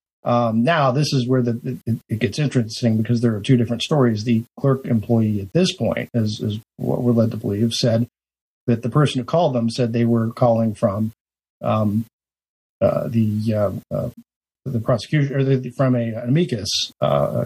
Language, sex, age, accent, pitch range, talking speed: English, male, 50-69, American, 115-130 Hz, 195 wpm